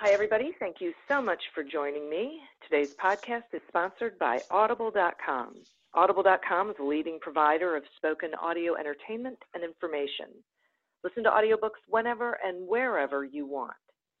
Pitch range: 145-220 Hz